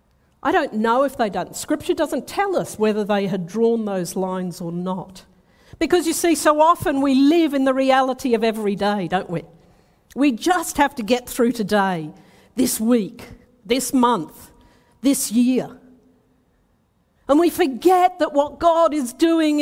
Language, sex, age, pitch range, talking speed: English, female, 50-69, 215-310 Hz, 165 wpm